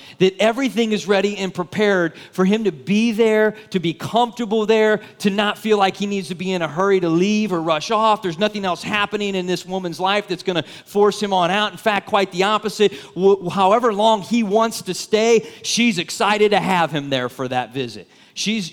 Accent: American